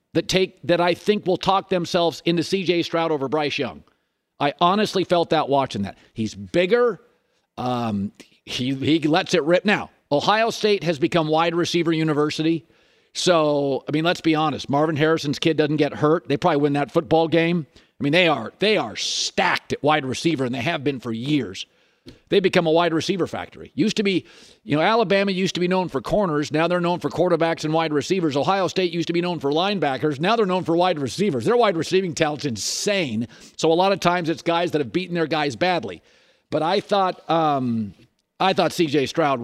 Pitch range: 145-185 Hz